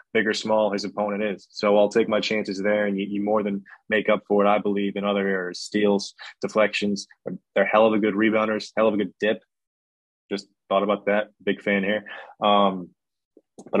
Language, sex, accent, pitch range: English, male, American, 100-110 Hz